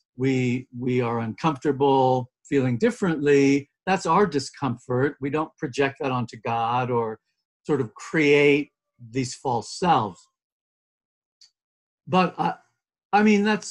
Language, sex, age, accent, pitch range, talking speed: English, male, 50-69, American, 125-160 Hz, 120 wpm